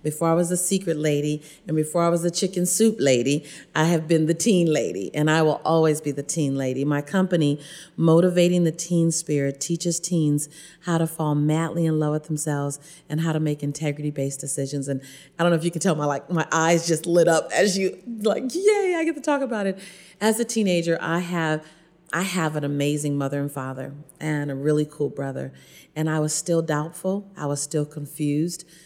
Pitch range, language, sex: 150-175 Hz, English, female